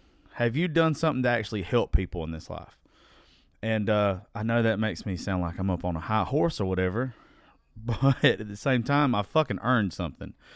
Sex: male